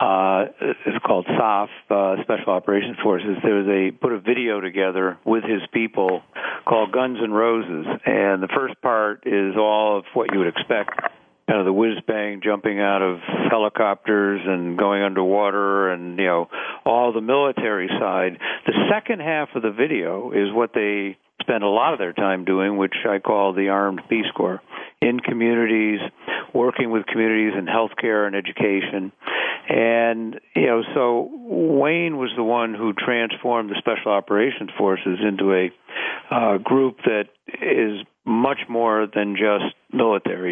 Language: English